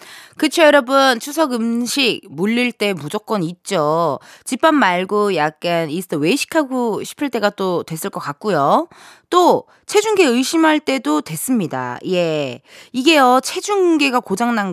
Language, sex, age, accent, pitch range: Korean, female, 20-39, native, 190-295 Hz